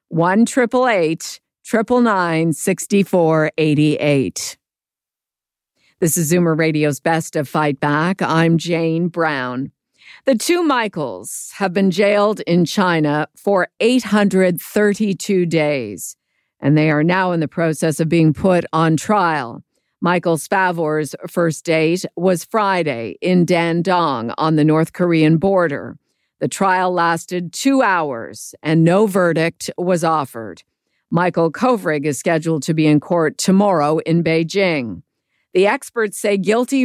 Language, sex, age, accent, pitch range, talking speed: English, female, 50-69, American, 155-190 Hz, 135 wpm